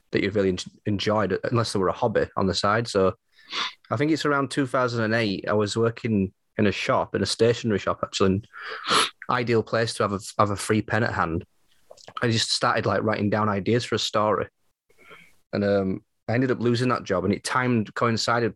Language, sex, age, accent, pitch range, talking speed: English, male, 20-39, British, 100-115 Hz, 205 wpm